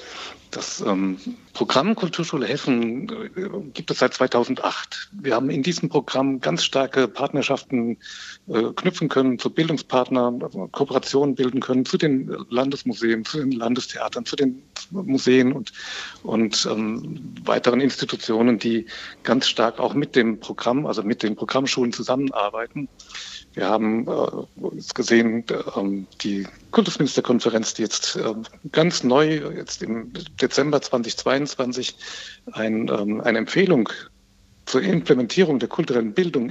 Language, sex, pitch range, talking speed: German, male, 115-145 Hz, 115 wpm